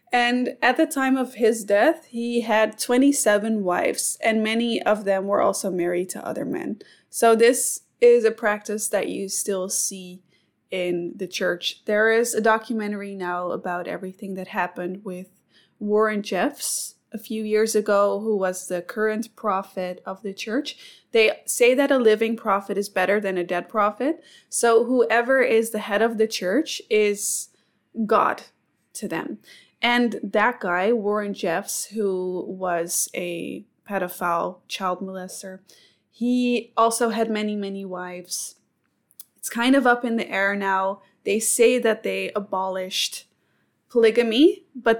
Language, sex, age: English, female, 20-39